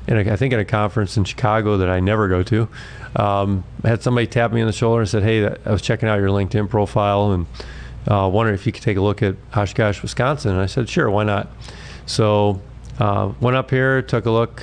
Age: 30-49